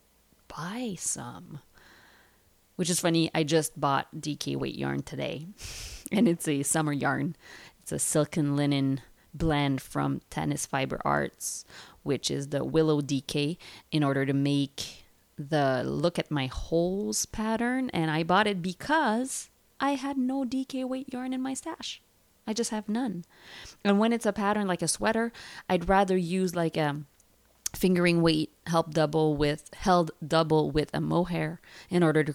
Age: 30-49